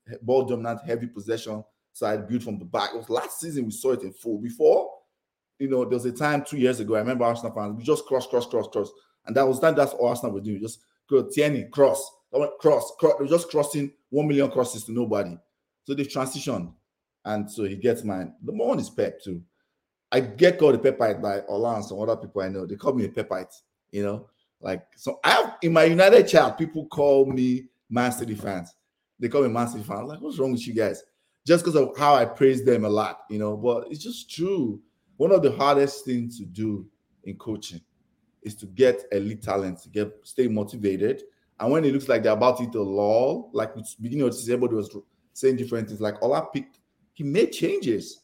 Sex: male